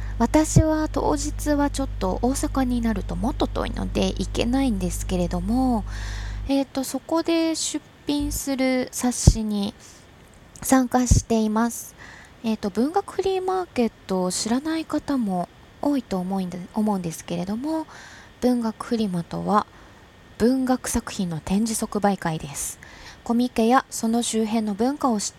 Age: 20-39